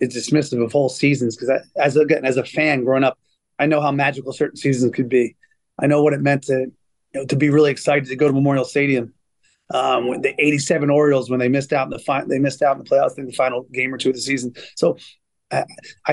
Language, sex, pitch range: English, male, 130-150 Hz